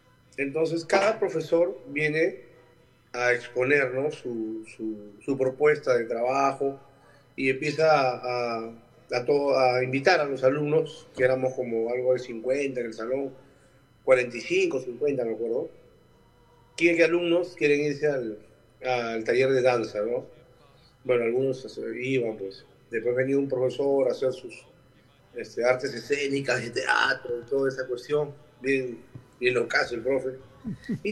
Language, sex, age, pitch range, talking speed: Spanish, male, 40-59, 125-160 Hz, 145 wpm